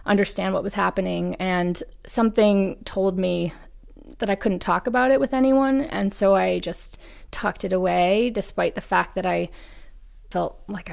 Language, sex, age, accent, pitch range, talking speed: English, female, 20-39, American, 180-215 Hz, 165 wpm